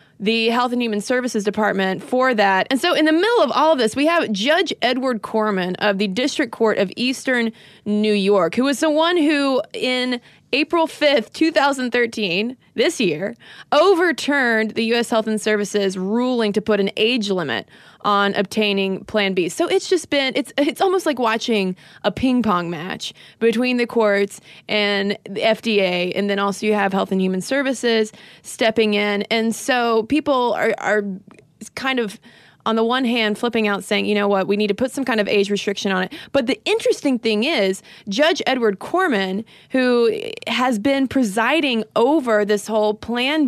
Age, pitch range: 20-39, 205-260 Hz